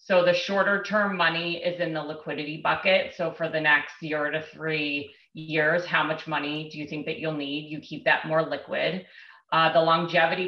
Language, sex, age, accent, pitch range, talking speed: English, female, 30-49, American, 155-175 Hz, 200 wpm